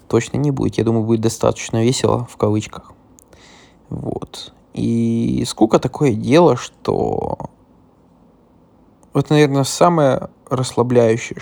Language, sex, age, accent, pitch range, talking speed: Russian, male, 20-39, native, 115-140 Hz, 105 wpm